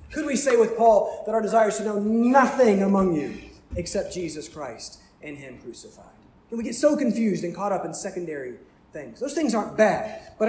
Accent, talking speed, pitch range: American, 205 wpm, 170-220 Hz